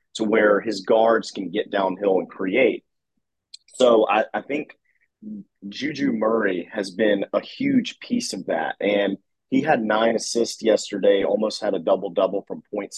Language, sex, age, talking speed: English, male, 30-49, 155 wpm